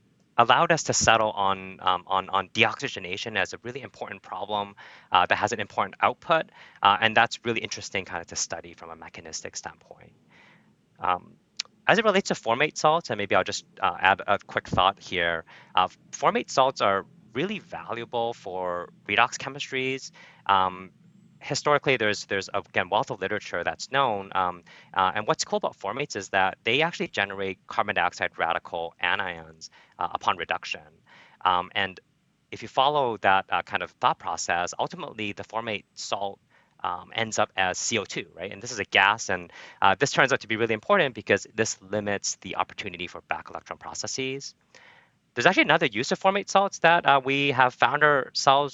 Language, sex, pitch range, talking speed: English, male, 95-135 Hz, 180 wpm